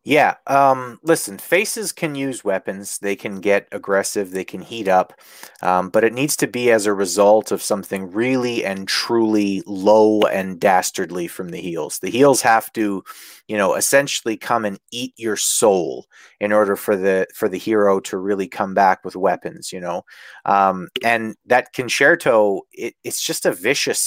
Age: 30-49